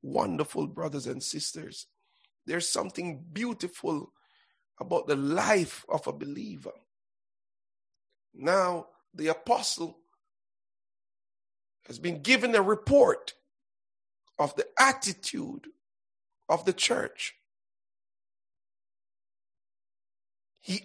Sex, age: male, 50-69